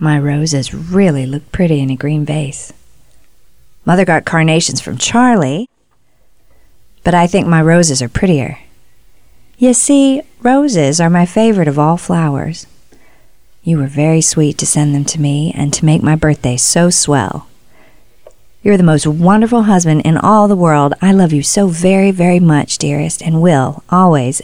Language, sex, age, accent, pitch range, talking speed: English, female, 40-59, American, 140-185 Hz, 160 wpm